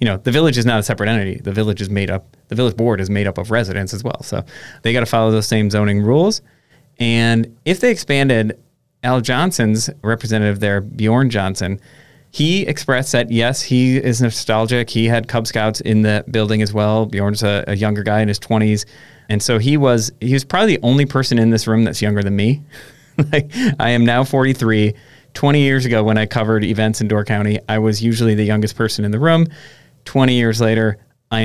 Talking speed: 215 wpm